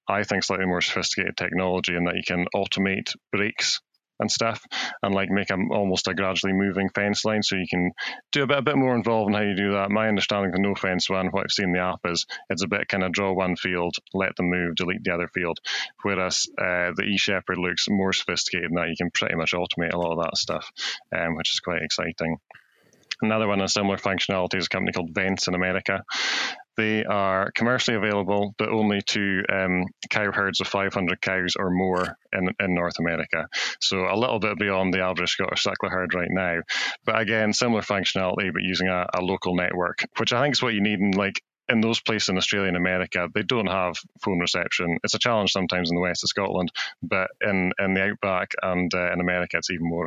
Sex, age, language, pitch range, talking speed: male, 20-39, English, 90-100 Hz, 220 wpm